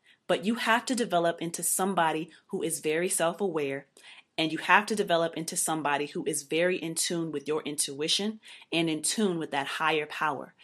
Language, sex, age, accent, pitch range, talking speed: English, female, 30-49, American, 155-190 Hz, 185 wpm